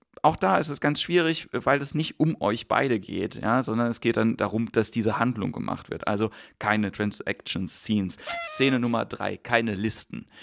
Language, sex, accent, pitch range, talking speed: German, male, German, 105-125 Hz, 190 wpm